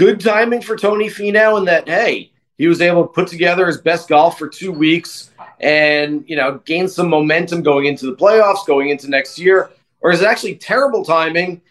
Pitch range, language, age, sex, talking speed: 160-195 Hz, English, 30-49, male, 205 wpm